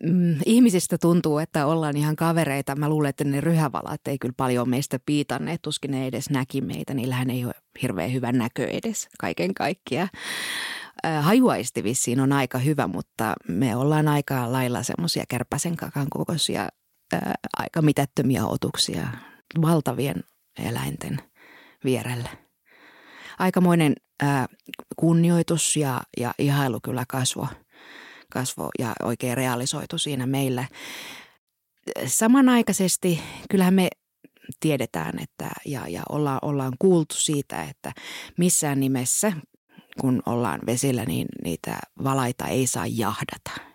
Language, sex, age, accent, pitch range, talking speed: Finnish, female, 20-39, native, 125-160 Hz, 120 wpm